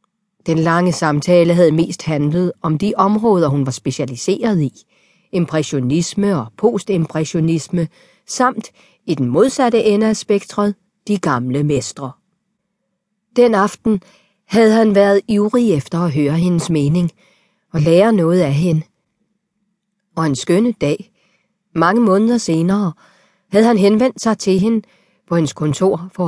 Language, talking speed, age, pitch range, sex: Danish, 135 wpm, 40-59, 155-205 Hz, female